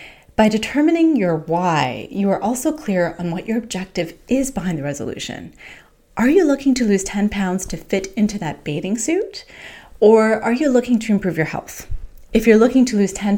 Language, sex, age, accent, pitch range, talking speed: English, female, 30-49, American, 165-230 Hz, 195 wpm